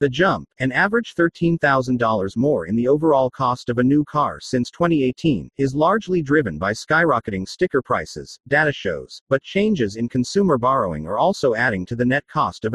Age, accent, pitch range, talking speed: 40-59, American, 125-160 Hz, 180 wpm